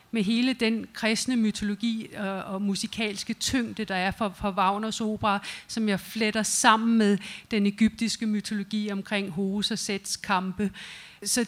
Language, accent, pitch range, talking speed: Danish, native, 210-235 Hz, 140 wpm